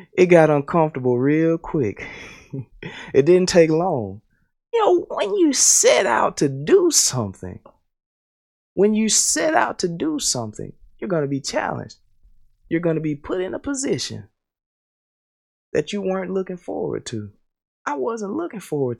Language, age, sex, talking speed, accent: English, 20-39, male, 150 wpm, American